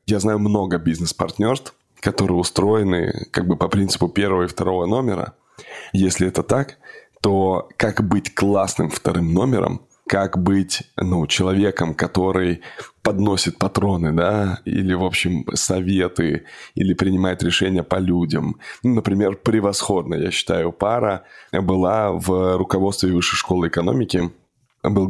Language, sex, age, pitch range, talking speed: Russian, male, 20-39, 90-100 Hz, 125 wpm